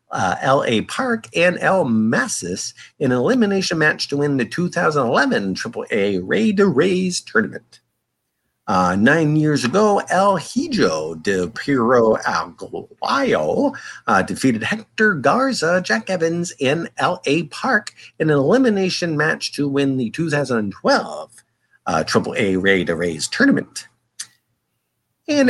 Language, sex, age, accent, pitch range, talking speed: English, male, 50-69, American, 125-205 Hz, 125 wpm